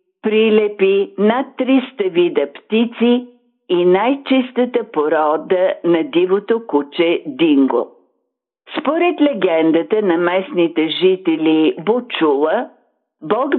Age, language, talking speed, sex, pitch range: 50-69, Bulgarian, 85 wpm, female, 165-245 Hz